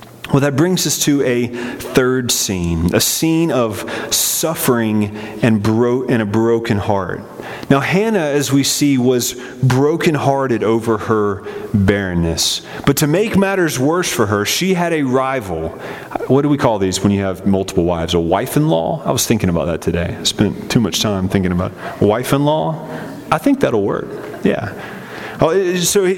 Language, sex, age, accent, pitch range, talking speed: English, male, 30-49, American, 110-160 Hz, 160 wpm